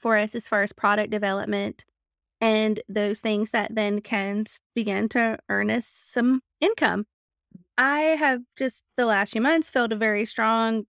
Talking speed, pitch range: 165 wpm, 220-270 Hz